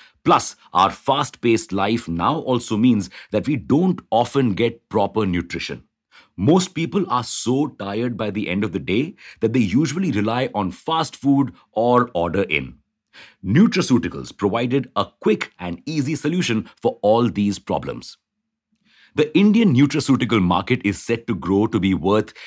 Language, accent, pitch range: English, Indian, 100-140 Hz